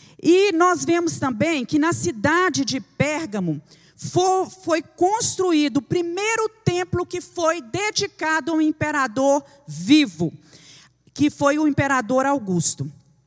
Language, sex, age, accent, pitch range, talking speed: Portuguese, female, 40-59, Brazilian, 230-330 Hz, 115 wpm